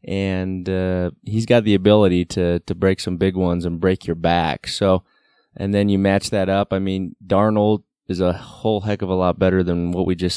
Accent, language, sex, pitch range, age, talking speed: American, English, male, 90-100 Hz, 20-39, 220 wpm